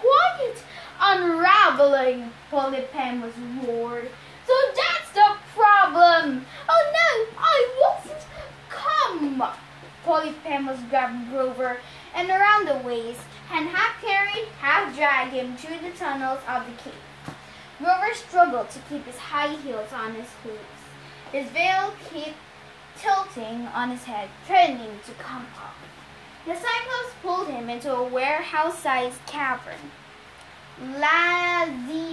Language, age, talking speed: English, 10-29, 120 wpm